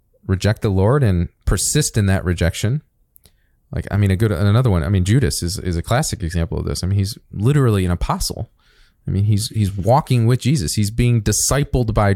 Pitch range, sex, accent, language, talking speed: 100-125 Hz, male, American, English, 205 wpm